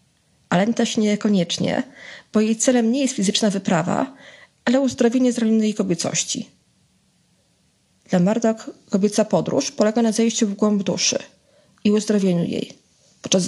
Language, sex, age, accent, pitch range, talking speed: Polish, female, 20-39, native, 185-220 Hz, 125 wpm